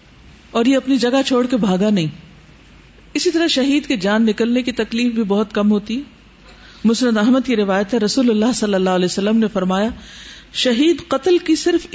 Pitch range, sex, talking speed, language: 195-270 Hz, female, 185 wpm, Urdu